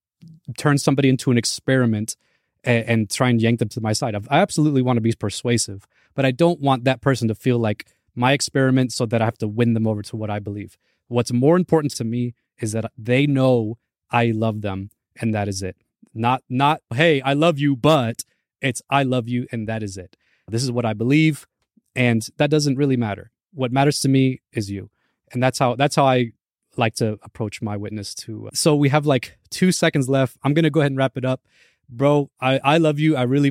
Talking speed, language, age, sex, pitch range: 225 wpm, English, 20-39, male, 115-155 Hz